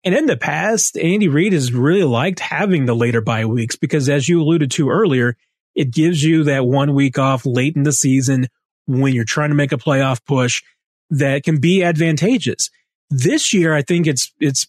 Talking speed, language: 200 wpm, English